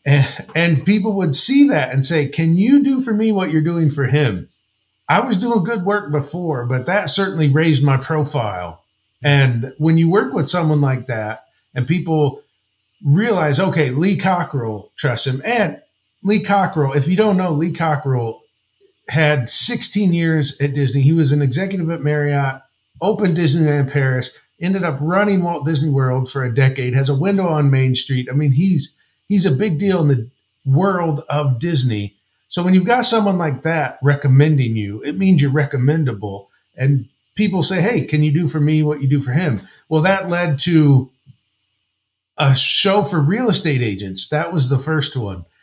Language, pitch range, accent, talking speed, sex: English, 135-180 Hz, American, 180 wpm, male